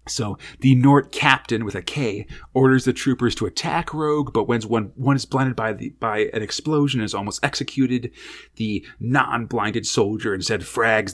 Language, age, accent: English, 30-49, American